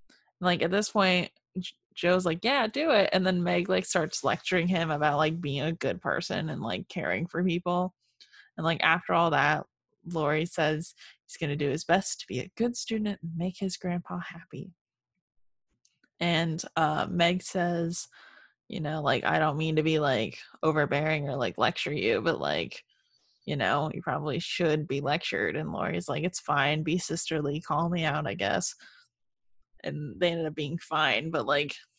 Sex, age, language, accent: female, 10-29, English, American